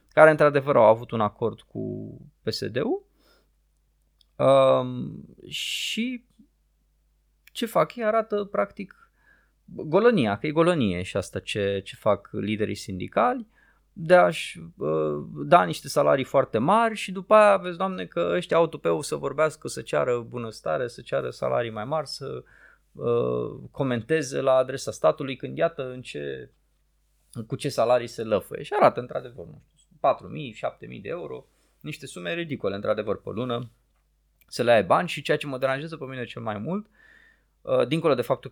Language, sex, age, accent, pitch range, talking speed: Romanian, male, 20-39, native, 100-155 Hz, 155 wpm